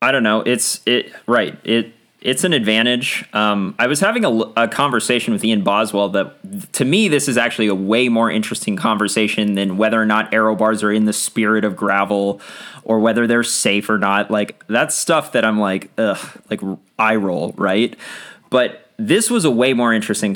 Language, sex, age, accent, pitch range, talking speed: English, male, 20-39, American, 100-125 Hz, 200 wpm